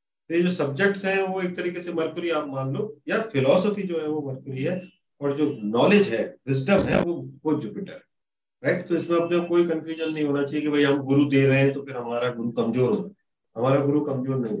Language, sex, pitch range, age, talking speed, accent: Hindi, male, 135-170 Hz, 40-59, 220 wpm, native